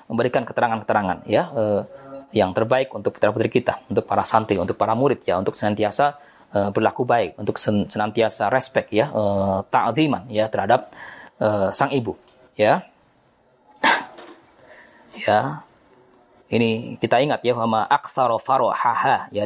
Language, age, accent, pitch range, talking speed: Indonesian, 20-39, native, 110-155 Hz, 130 wpm